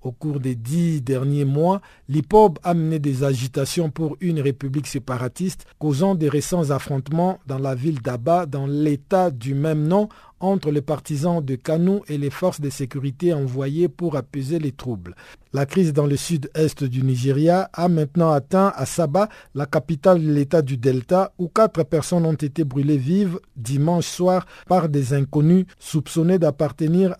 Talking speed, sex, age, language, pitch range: 165 wpm, male, 50-69, French, 135-170 Hz